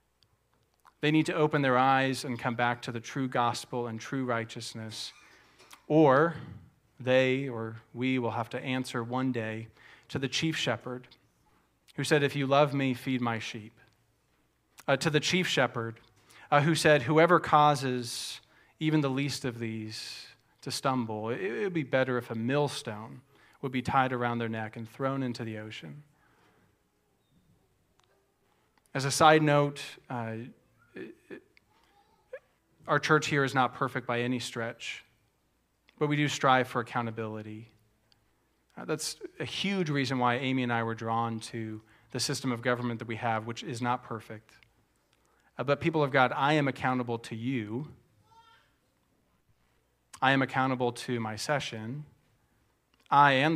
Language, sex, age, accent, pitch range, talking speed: English, male, 40-59, American, 115-140 Hz, 150 wpm